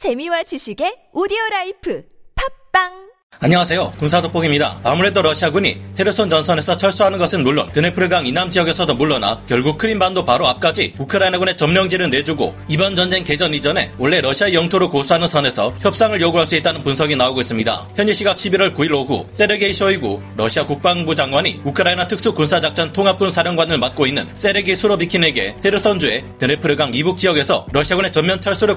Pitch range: 150-195 Hz